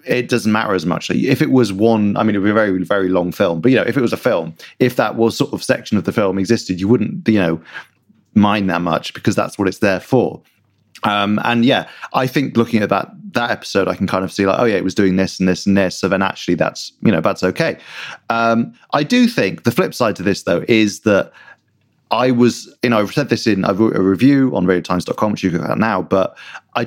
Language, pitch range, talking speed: English, 95-115 Hz, 265 wpm